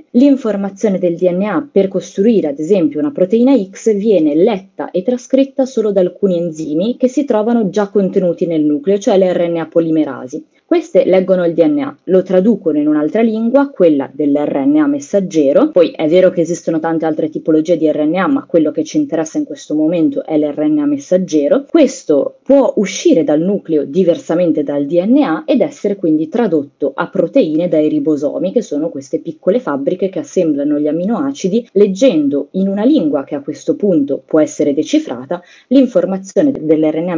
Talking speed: 160 wpm